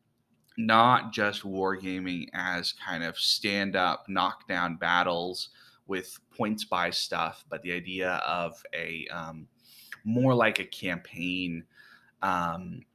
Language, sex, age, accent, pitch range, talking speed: English, male, 20-39, American, 90-110 Hz, 110 wpm